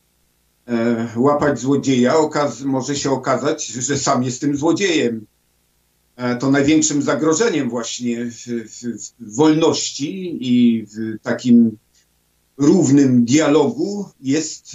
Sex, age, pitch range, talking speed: male, 50-69, 120-150 Hz, 110 wpm